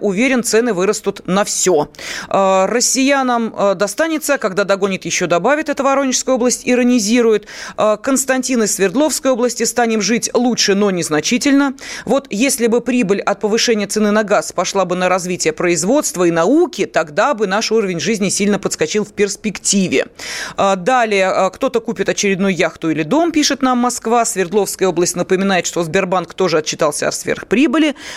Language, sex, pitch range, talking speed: Russian, female, 190-245 Hz, 145 wpm